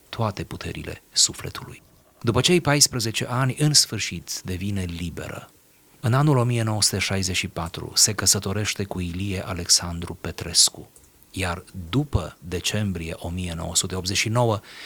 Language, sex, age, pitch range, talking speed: Romanian, male, 30-49, 90-115 Hz, 95 wpm